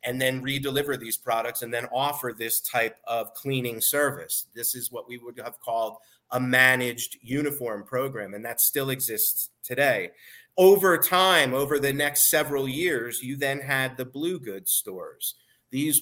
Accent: American